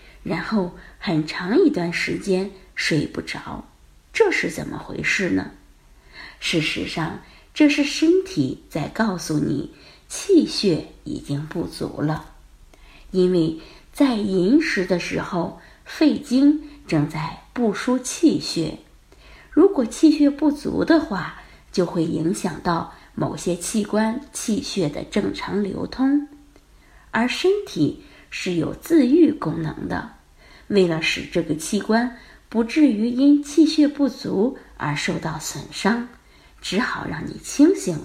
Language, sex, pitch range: Chinese, female, 180-295 Hz